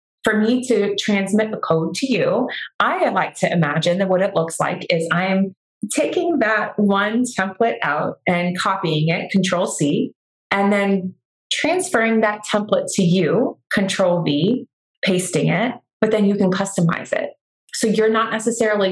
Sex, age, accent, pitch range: female, 30-49, American, 175-220 Hz